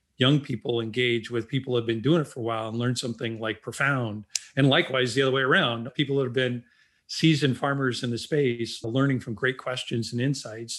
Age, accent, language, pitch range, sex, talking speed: 40-59, American, English, 115-135 Hz, male, 215 wpm